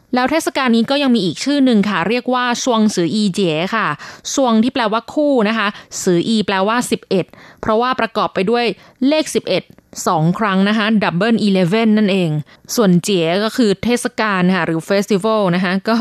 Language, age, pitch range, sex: Thai, 20-39, 190-240 Hz, female